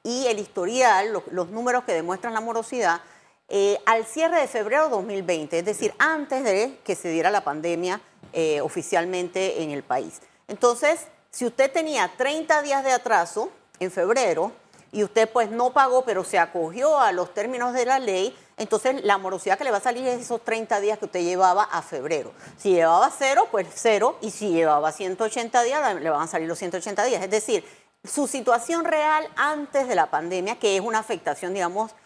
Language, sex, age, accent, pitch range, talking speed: Spanish, female, 40-59, American, 190-265 Hz, 190 wpm